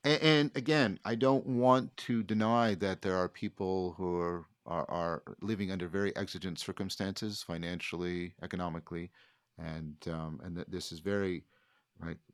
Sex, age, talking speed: male, 50-69, 145 wpm